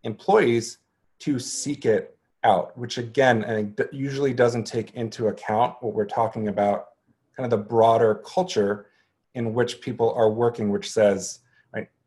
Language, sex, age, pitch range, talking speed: English, male, 30-49, 105-130 Hz, 155 wpm